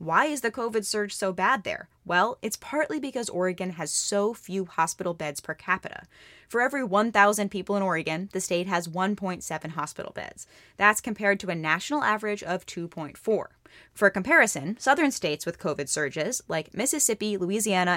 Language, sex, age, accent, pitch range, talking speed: English, female, 10-29, American, 170-210 Hz, 170 wpm